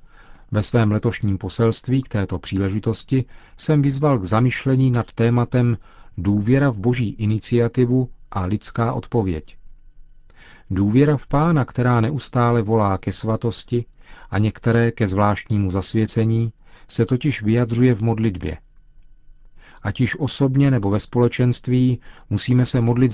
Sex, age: male, 40-59